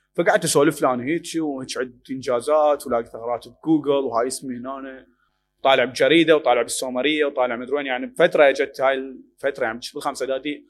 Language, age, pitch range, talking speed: Arabic, 30-49, 130-170 Hz, 145 wpm